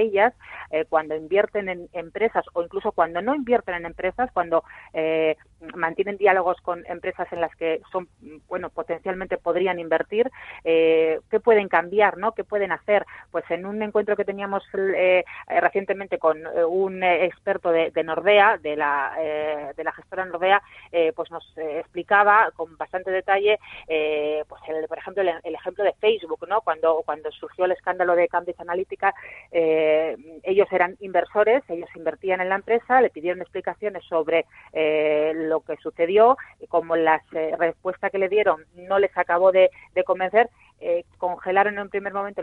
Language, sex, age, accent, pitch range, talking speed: Spanish, female, 30-49, Spanish, 165-200 Hz, 165 wpm